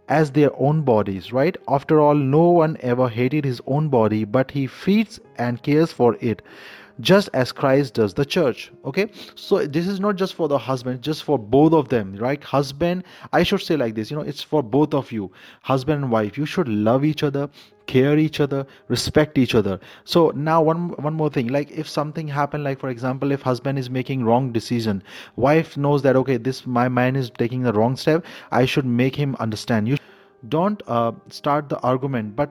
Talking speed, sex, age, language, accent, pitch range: 205 wpm, male, 30-49, English, Indian, 125-155 Hz